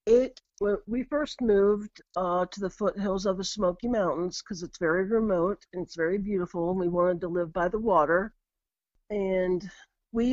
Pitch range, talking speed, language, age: 180-215 Hz, 180 wpm, English, 50-69